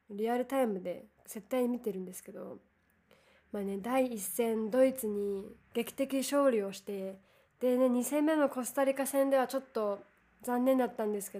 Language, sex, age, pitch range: Japanese, female, 20-39, 205-275 Hz